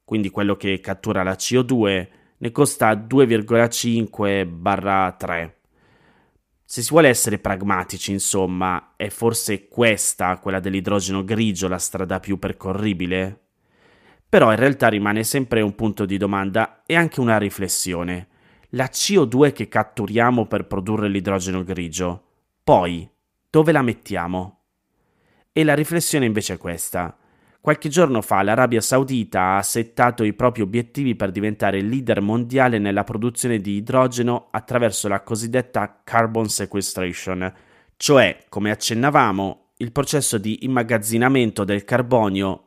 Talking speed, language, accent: 125 wpm, Italian, native